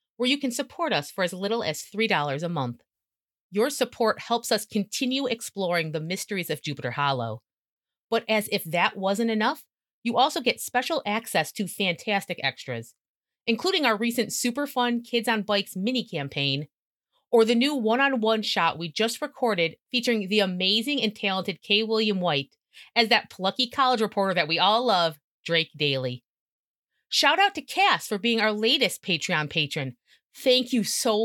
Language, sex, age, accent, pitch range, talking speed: English, female, 30-49, American, 170-245 Hz, 165 wpm